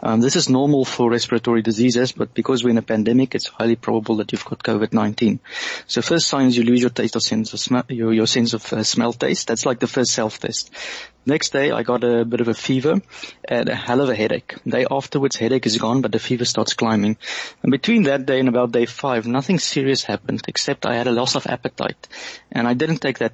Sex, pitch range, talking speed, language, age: male, 115-135 Hz, 235 wpm, English, 30-49